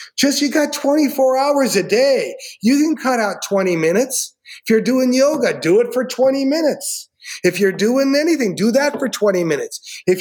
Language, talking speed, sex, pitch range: English, 190 wpm, male, 200-265 Hz